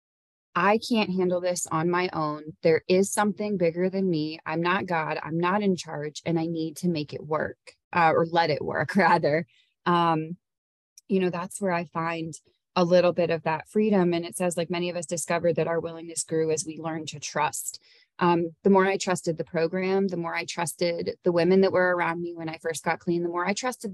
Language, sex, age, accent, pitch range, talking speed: English, female, 20-39, American, 160-190 Hz, 225 wpm